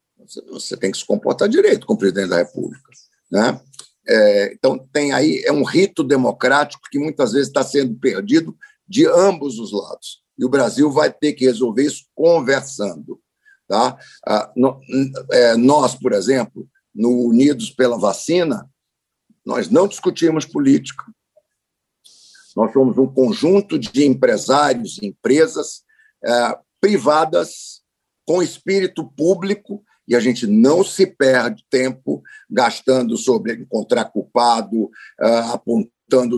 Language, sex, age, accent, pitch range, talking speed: Portuguese, male, 60-79, Brazilian, 130-195 Hz, 120 wpm